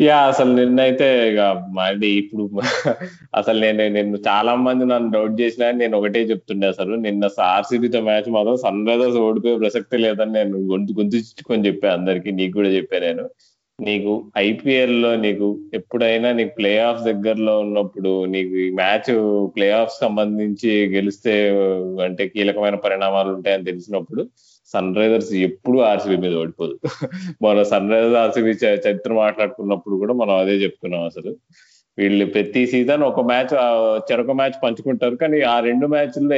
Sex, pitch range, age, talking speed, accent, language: male, 100-120 Hz, 20-39, 140 wpm, native, Telugu